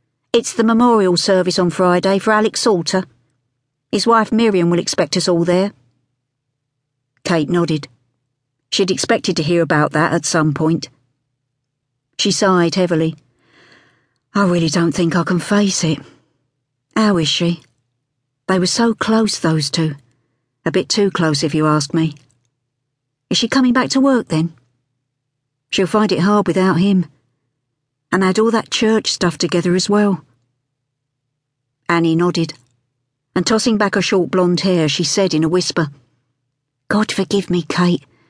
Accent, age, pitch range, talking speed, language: British, 50-69, 135-195 Hz, 150 wpm, English